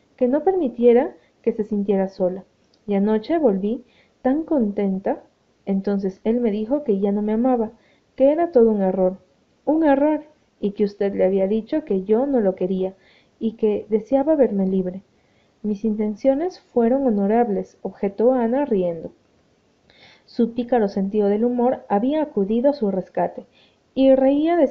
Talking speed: 160 wpm